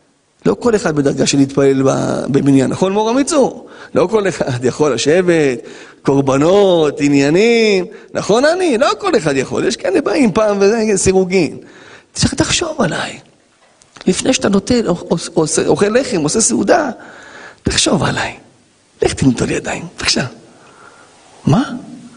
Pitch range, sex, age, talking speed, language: 170-260 Hz, male, 40-59, 125 wpm, Hebrew